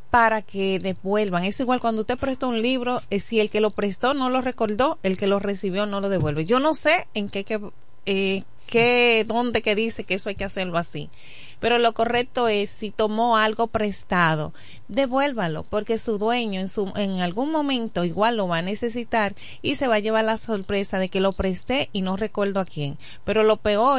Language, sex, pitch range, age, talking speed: Spanish, female, 185-230 Hz, 30-49, 210 wpm